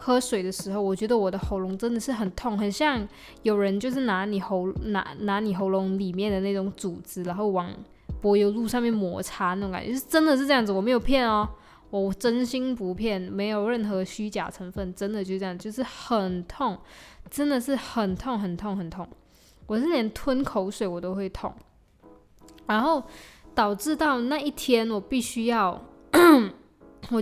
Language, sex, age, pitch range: Chinese, female, 10-29, 190-245 Hz